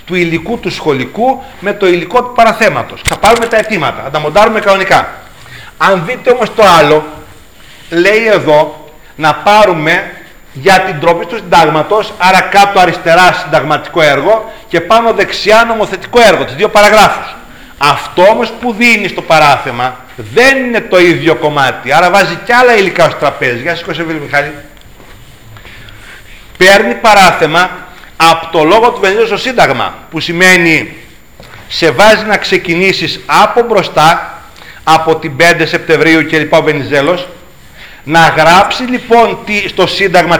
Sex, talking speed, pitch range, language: male, 140 wpm, 160-210 Hz, Greek